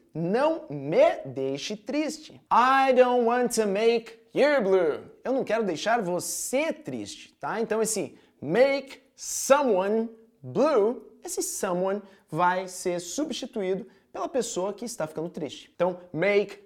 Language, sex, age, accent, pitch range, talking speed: Portuguese, male, 20-39, Brazilian, 175-250 Hz, 130 wpm